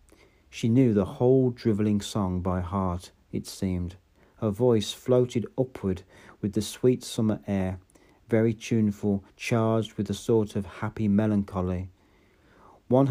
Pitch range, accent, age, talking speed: 95-115 Hz, British, 50-69, 135 wpm